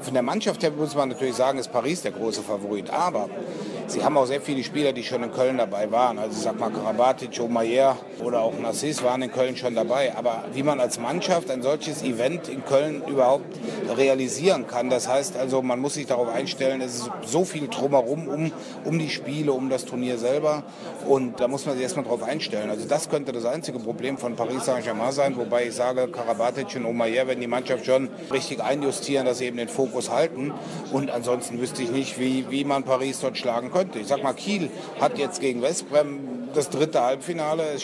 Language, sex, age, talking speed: German, male, 30-49, 210 wpm